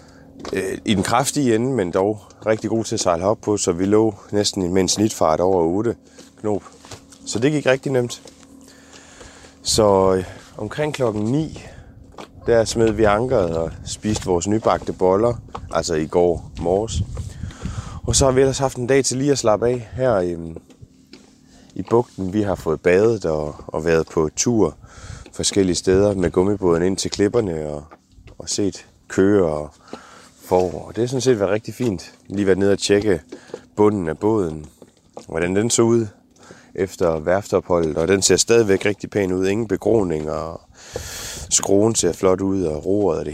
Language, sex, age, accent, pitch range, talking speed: Danish, male, 30-49, native, 90-115 Hz, 170 wpm